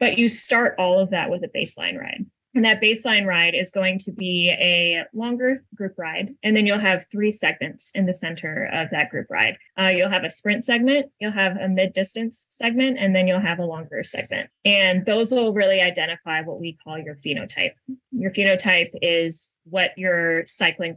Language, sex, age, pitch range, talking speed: Portuguese, female, 20-39, 170-205 Hz, 200 wpm